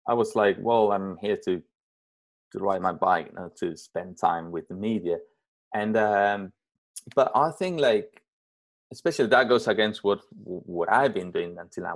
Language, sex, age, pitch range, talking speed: English, male, 30-49, 95-145 Hz, 180 wpm